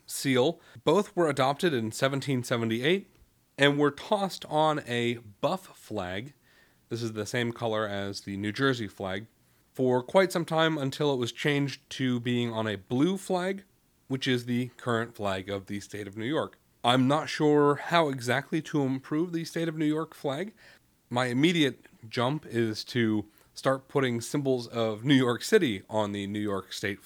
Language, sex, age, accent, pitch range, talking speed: English, male, 30-49, American, 110-155 Hz, 175 wpm